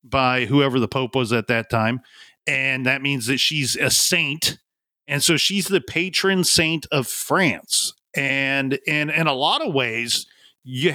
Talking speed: 170 wpm